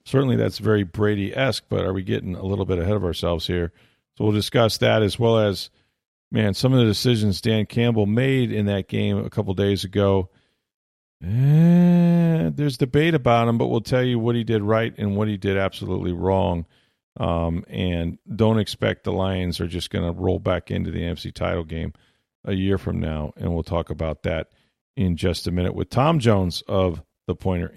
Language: English